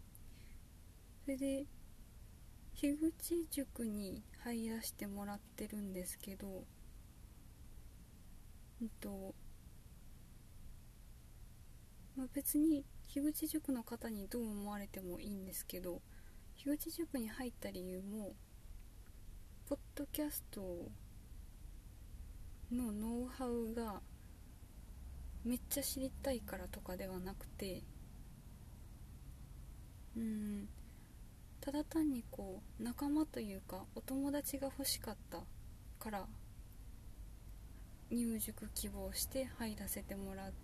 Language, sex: Japanese, female